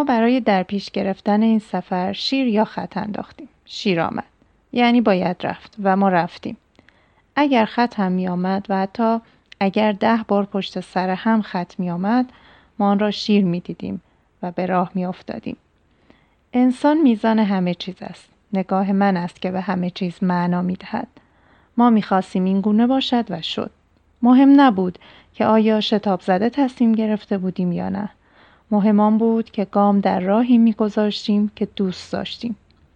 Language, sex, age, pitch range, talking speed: Persian, female, 30-49, 185-225 Hz, 165 wpm